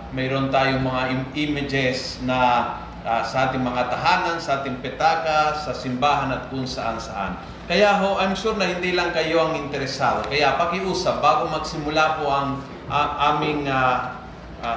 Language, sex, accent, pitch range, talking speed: Filipino, male, native, 140-175 Hz, 165 wpm